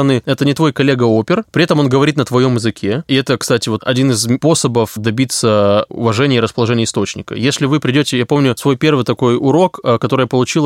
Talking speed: 205 wpm